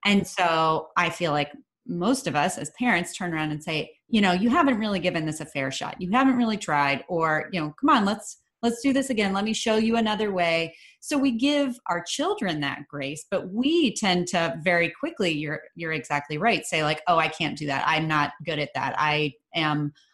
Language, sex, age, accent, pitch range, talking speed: English, female, 30-49, American, 160-225 Hz, 225 wpm